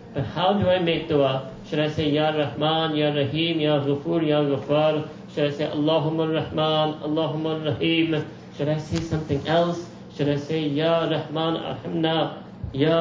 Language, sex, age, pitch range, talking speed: English, male, 50-69, 145-180 Hz, 165 wpm